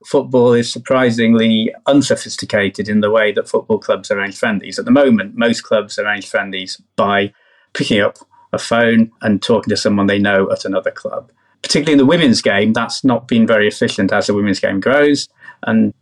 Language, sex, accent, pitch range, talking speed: English, male, British, 105-120 Hz, 185 wpm